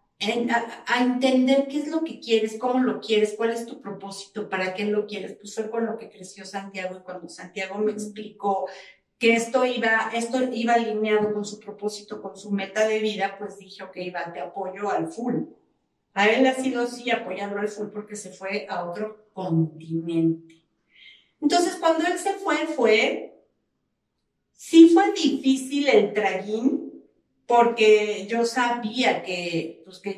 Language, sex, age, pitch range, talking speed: Spanish, female, 50-69, 200-245 Hz, 165 wpm